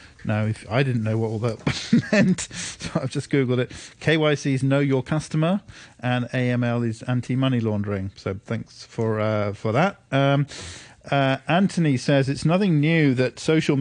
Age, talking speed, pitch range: 40-59, 175 wpm, 125-155 Hz